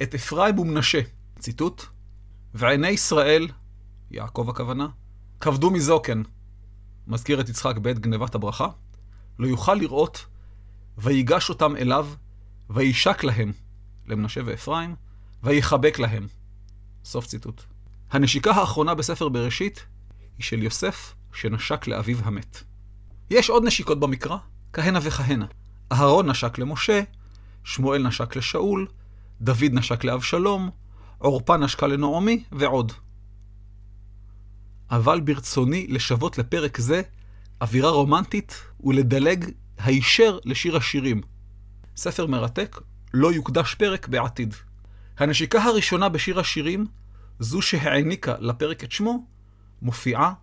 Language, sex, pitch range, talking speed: Hebrew, male, 100-150 Hz, 105 wpm